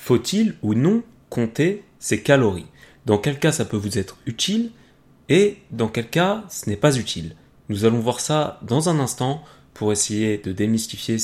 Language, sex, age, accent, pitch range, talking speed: French, male, 30-49, French, 105-140 Hz, 175 wpm